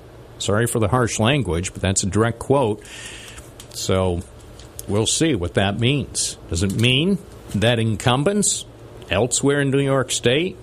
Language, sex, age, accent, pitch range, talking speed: English, male, 50-69, American, 105-120 Hz, 145 wpm